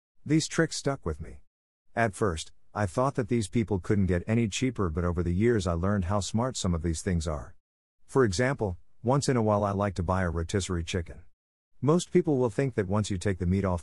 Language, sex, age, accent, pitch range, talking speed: English, male, 50-69, American, 90-115 Hz, 230 wpm